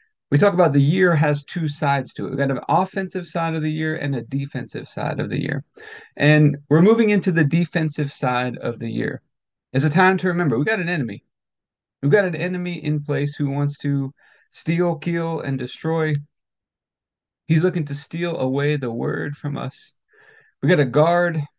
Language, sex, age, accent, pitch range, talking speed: English, male, 30-49, American, 140-165 Hz, 195 wpm